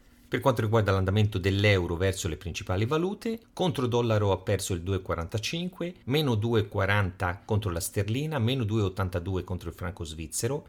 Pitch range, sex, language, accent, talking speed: 95-120 Hz, male, Italian, native, 145 wpm